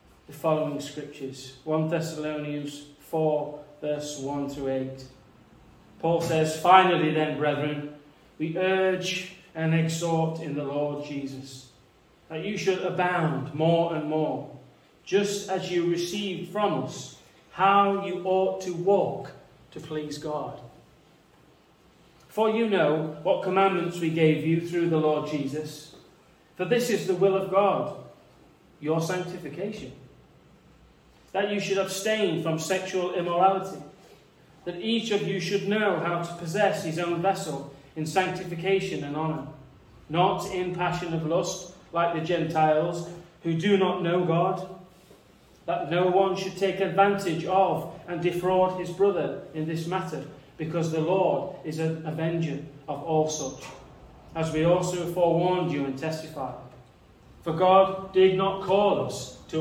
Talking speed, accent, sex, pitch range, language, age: 140 wpm, British, male, 150-185 Hz, English, 30-49